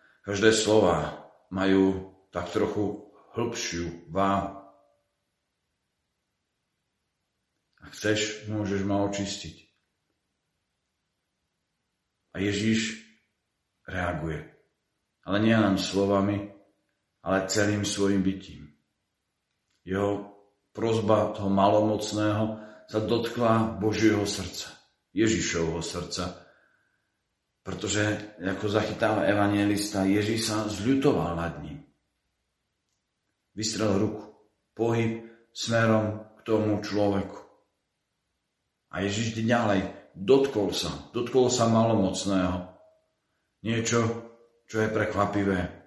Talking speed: 80 wpm